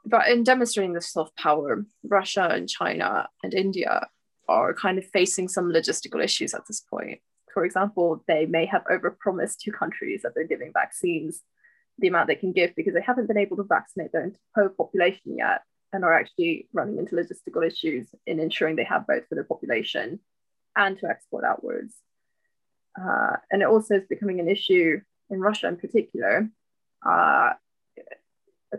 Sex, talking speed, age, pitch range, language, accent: female, 170 wpm, 10-29, 185-275 Hz, English, British